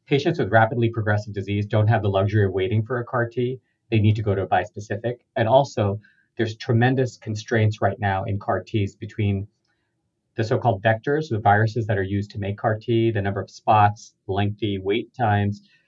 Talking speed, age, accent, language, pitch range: 195 wpm, 40-59, American, English, 105-125 Hz